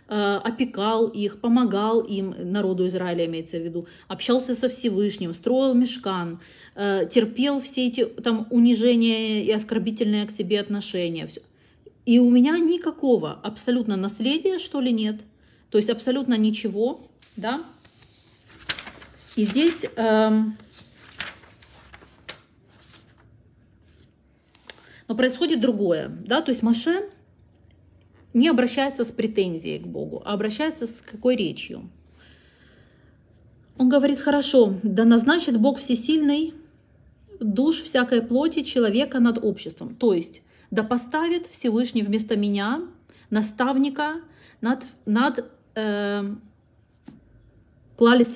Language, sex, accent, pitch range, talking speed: Russian, female, native, 200-255 Hz, 100 wpm